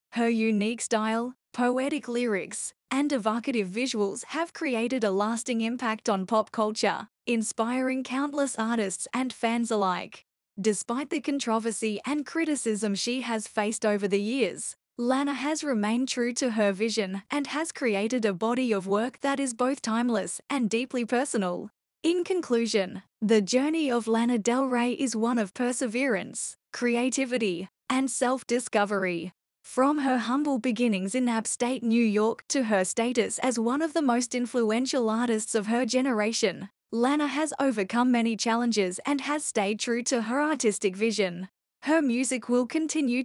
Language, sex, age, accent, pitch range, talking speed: English, female, 10-29, Australian, 215-260 Hz, 150 wpm